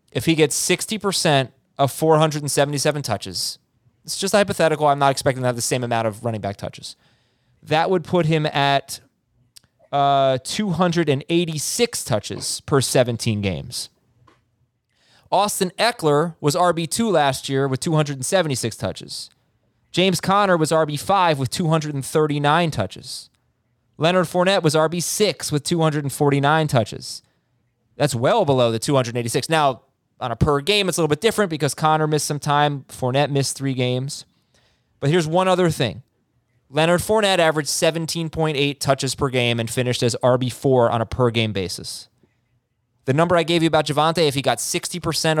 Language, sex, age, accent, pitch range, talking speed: English, male, 20-39, American, 125-165 Hz, 145 wpm